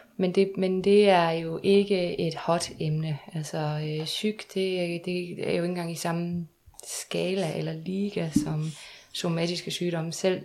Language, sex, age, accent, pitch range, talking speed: Danish, female, 20-39, native, 160-195 Hz, 160 wpm